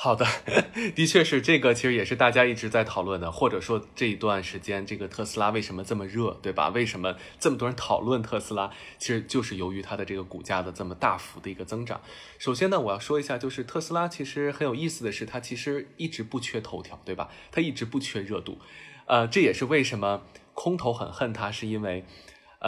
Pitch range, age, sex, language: 95-125 Hz, 20-39, male, Chinese